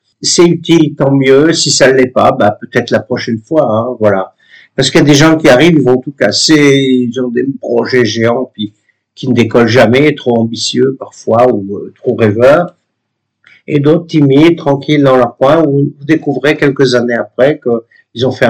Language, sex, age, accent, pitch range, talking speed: French, male, 50-69, French, 115-150 Hz, 200 wpm